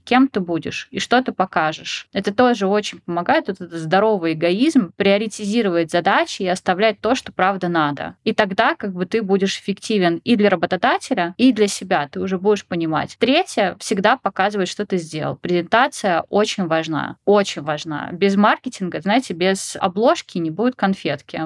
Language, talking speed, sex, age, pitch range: Russian, 165 wpm, female, 20-39, 175-215 Hz